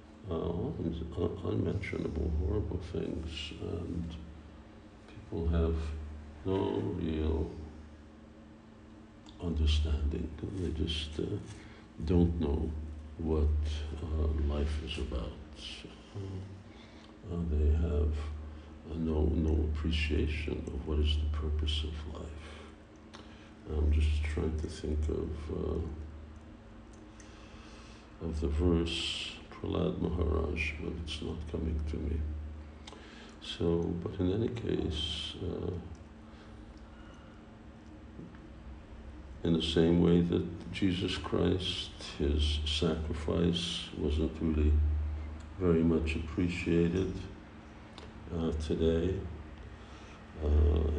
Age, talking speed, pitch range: 60-79, 85 wpm, 75-90 Hz